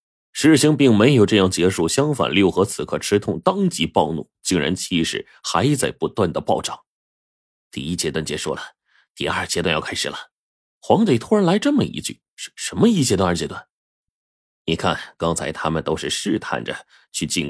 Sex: male